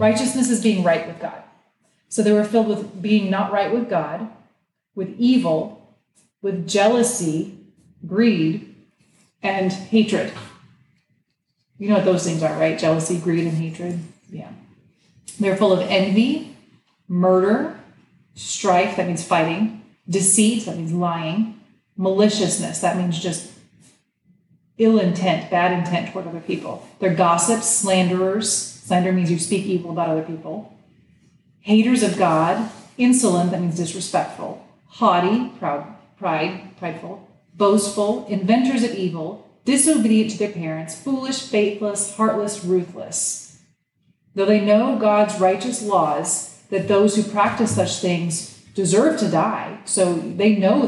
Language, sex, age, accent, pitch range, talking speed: English, female, 30-49, American, 175-215 Hz, 130 wpm